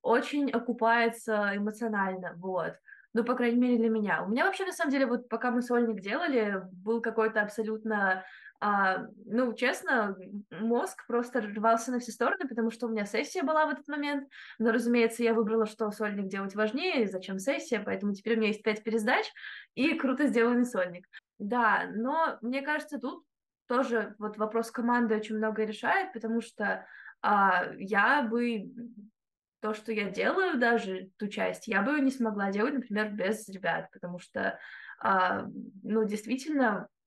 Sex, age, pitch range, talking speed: female, 20-39, 210-245 Hz, 155 wpm